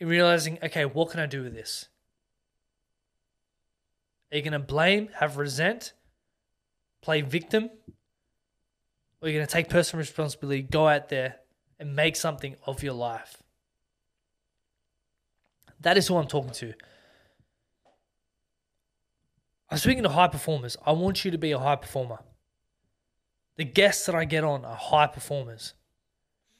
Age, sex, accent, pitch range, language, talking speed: 20-39, male, Australian, 135-170 Hz, English, 140 wpm